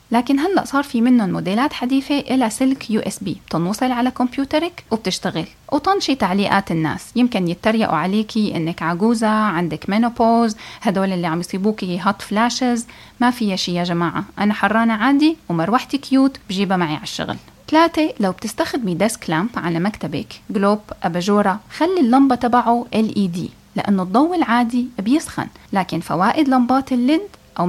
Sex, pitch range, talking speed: female, 195-270 Hz, 145 wpm